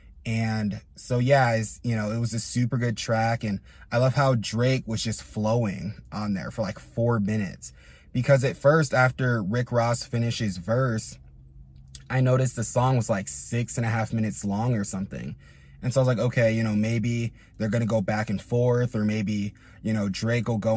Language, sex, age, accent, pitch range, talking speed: English, male, 20-39, American, 105-120 Hz, 200 wpm